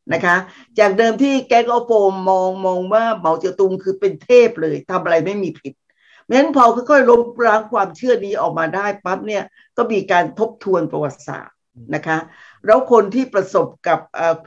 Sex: female